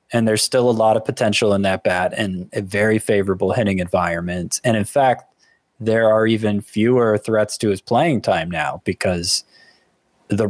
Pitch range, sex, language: 100-120 Hz, male, English